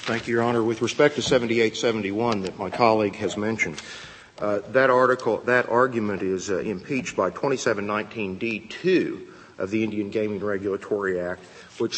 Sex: male